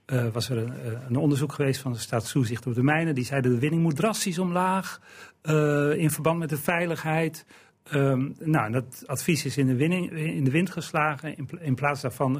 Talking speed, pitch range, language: 190 wpm, 125-160 Hz, Dutch